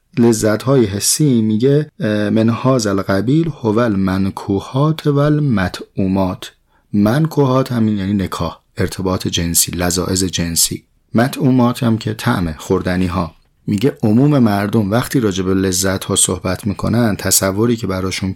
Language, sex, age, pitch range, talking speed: Persian, male, 30-49, 95-125 Hz, 125 wpm